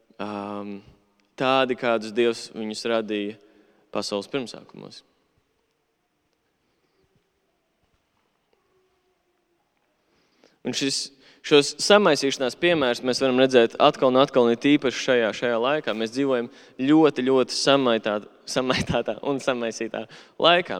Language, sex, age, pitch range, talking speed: English, male, 20-39, 115-140 Hz, 90 wpm